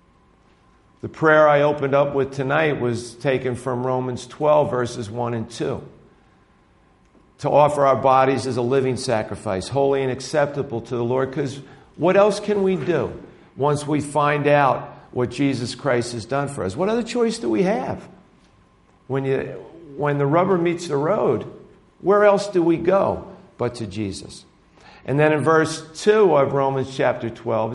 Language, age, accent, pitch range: English, 50-69, American, 130-165 Hz